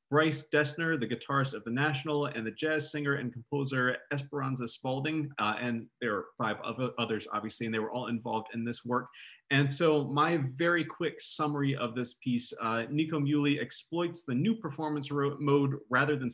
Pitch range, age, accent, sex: 115-145 Hz, 30-49, American, male